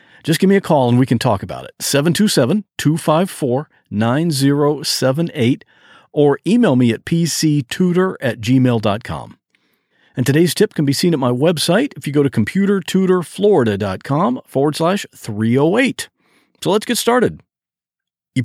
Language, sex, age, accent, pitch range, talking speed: English, male, 50-69, American, 120-175 Hz, 135 wpm